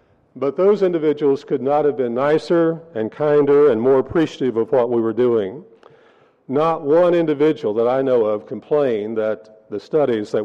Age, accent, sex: 50-69, American, male